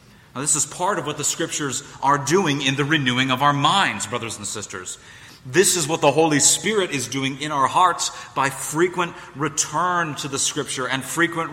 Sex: male